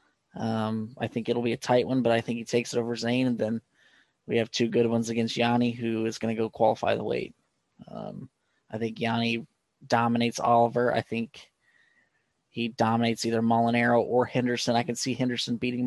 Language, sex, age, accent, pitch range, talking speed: English, male, 20-39, American, 115-130 Hz, 195 wpm